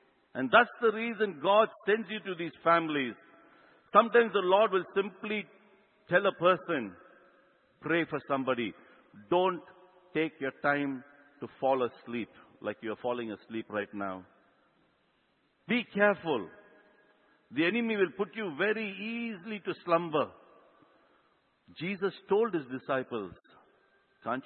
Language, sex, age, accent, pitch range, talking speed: English, male, 60-79, Indian, 130-195 Hz, 125 wpm